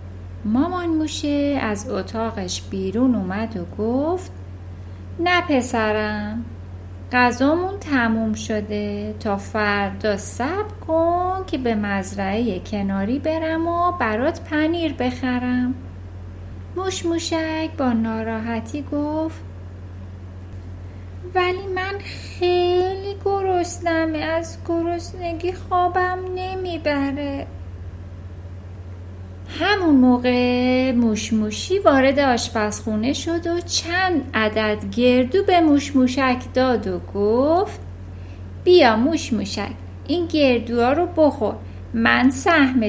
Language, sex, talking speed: Persian, female, 85 wpm